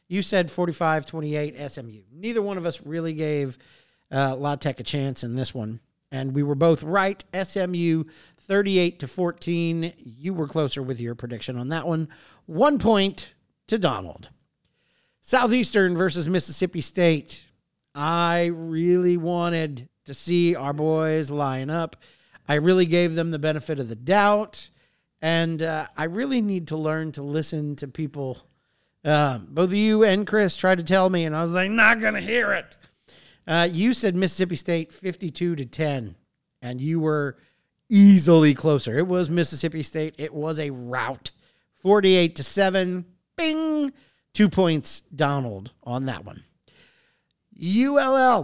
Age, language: 50-69, English